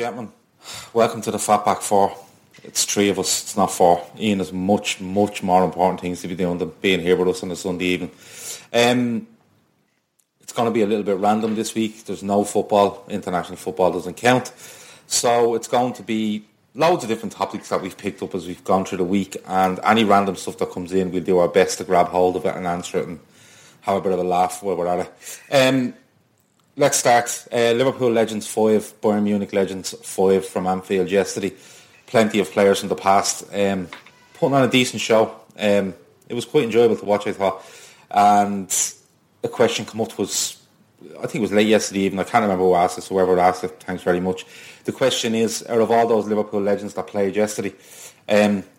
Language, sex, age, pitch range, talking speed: English, male, 30-49, 95-110 Hz, 210 wpm